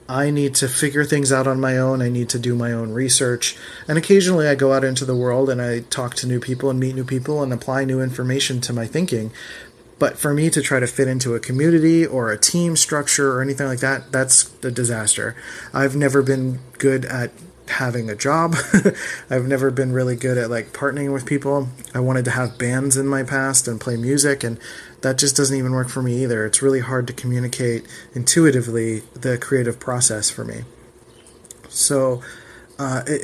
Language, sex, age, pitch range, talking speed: English, male, 30-49, 125-140 Hz, 205 wpm